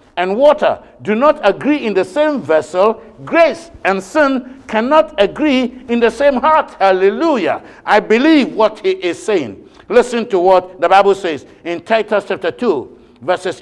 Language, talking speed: English, 160 wpm